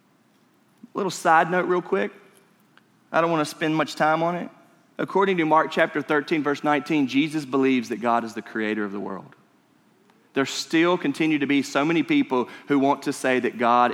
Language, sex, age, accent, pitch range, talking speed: English, male, 30-49, American, 125-180 Hz, 195 wpm